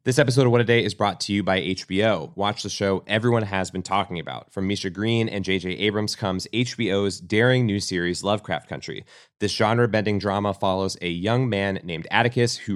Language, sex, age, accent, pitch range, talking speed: English, male, 30-49, American, 95-115 Hz, 200 wpm